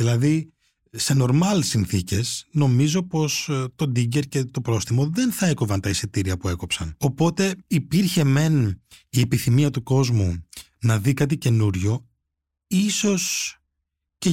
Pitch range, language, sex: 105-140 Hz, Greek, male